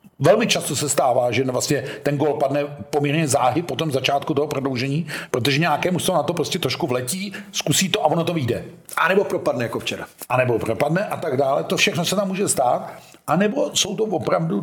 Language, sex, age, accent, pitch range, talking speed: Czech, male, 50-69, native, 120-150 Hz, 215 wpm